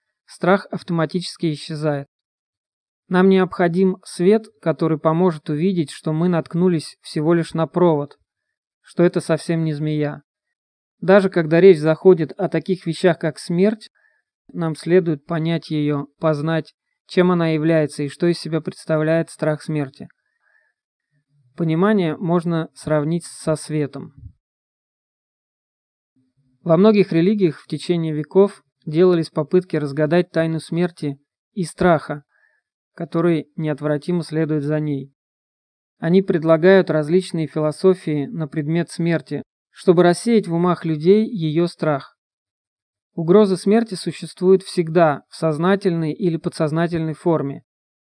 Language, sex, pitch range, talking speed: Russian, male, 155-180 Hz, 115 wpm